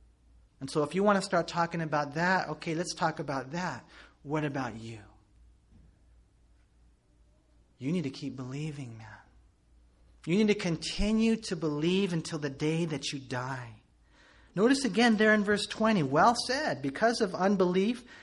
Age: 40-59